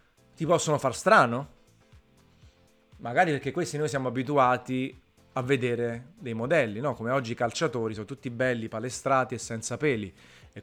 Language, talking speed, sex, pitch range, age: Italian, 150 wpm, male, 110-130 Hz, 30-49